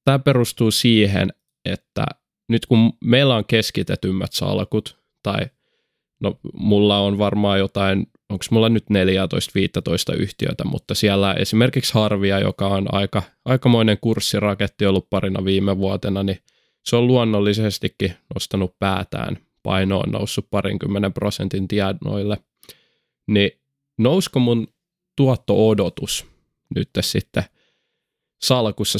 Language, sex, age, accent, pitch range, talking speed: Finnish, male, 20-39, native, 95-115 Hz, 110 wpm